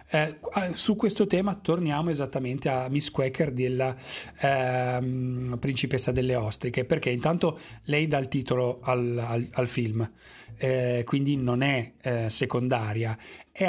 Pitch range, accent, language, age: 130-150 Hz, native, Italian, 30-49